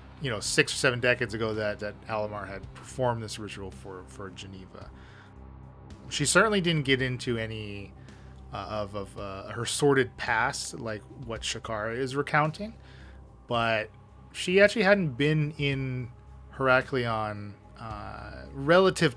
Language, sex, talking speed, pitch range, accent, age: English, male, 140 wpm, 105-130 Hz, American, 30-49